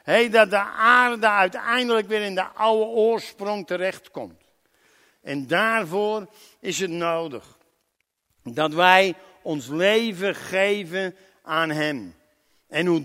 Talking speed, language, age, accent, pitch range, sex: 110 wpm, Dutch, 60-79, Dutch, 190-230 Hz, male